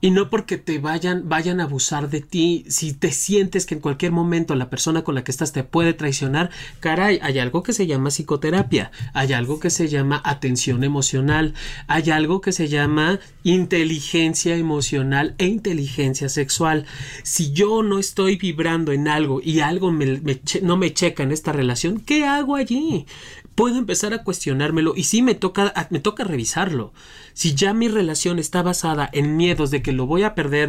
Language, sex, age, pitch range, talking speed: Spanish, male, 30-49, 145-185 Hz, 180 wpm